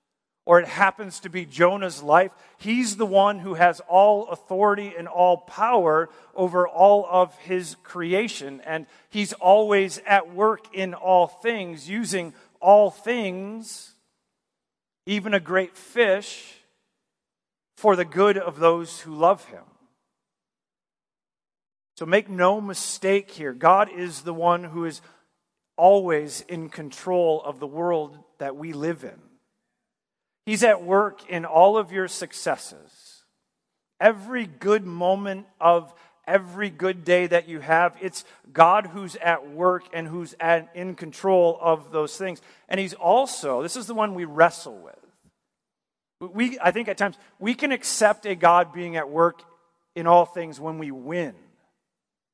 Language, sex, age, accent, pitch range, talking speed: English, male, 40-59, American, 170-200 Hz, 145 wpm